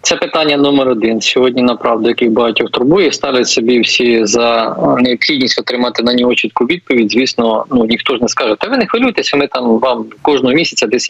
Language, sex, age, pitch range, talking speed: Ukrainian, male, 20-39, 120-140 Hz, 195 wpm